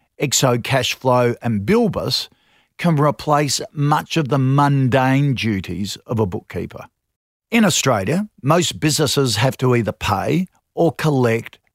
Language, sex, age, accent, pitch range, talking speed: English, male, 50-69, Australian, 120-155 Hz, 125 wpm